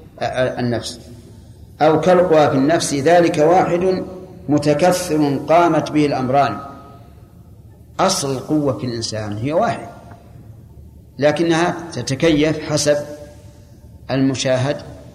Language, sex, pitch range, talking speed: Arabic, male, 115-155 Hz, 85 wpm